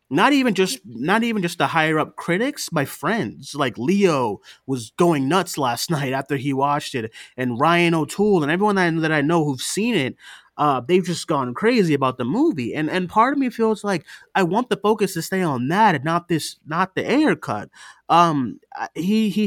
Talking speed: 205 wpm